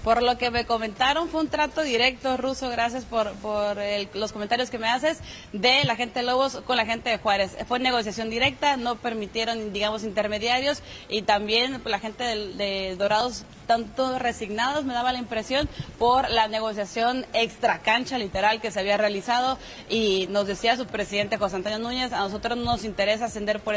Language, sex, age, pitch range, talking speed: Spanish, female, 30-49, 210-250 Hz, 185 wpm